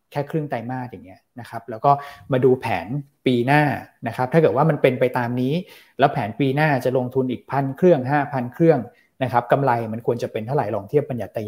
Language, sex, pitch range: Thai, male, 120-150 Hz